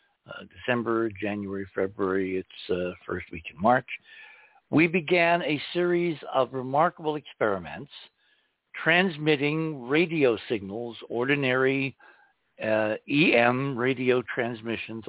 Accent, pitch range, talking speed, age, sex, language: American, 110-155 Hz, 100 wpm, 60-79, male, English